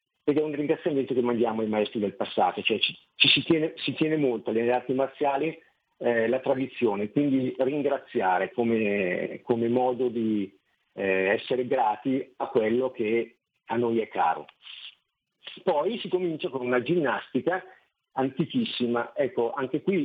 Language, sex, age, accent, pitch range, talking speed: Italian, male, 50-69, native, 115-145 Hz, 150 wpm